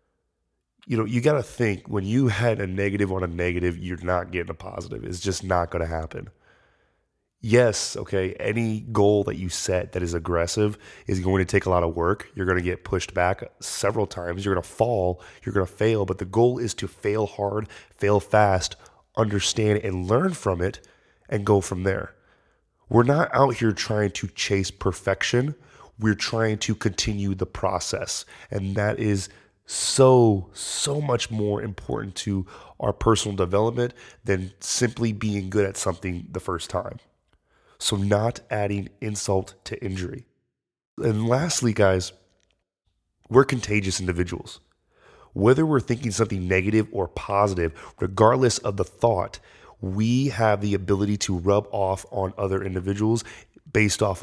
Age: 20-39